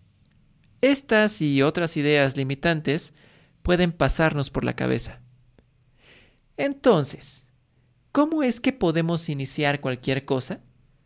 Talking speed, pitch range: 100 wpm, 130-170 Hz